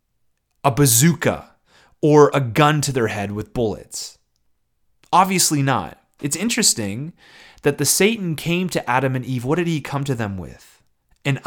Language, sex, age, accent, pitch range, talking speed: English, male, 30-49, American, 115-155 Hz, 155 wpm